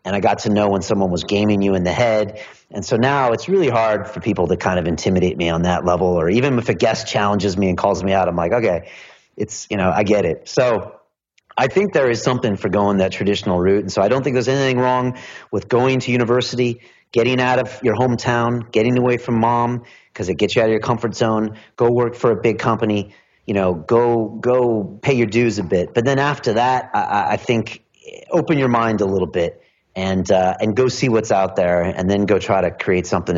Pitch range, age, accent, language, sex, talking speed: 95-120 Hz, 30-49, American, English, male, 240 wpm